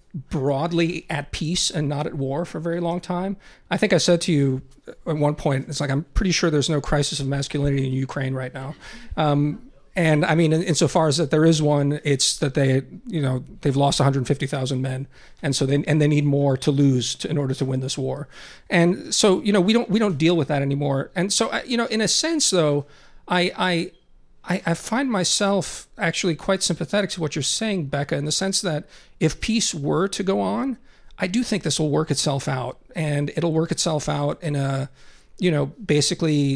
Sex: male